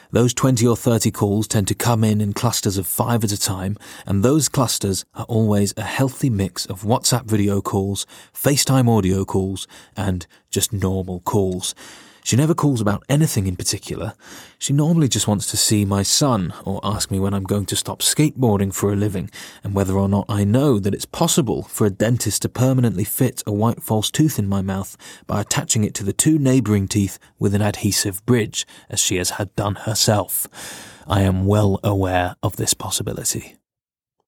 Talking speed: 190 wpm